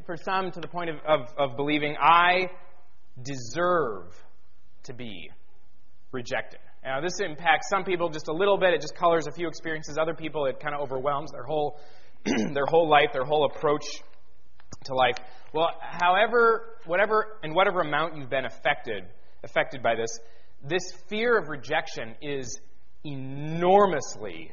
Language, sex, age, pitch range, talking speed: English, male, 30-49, 130-175 Hz, 155 wpm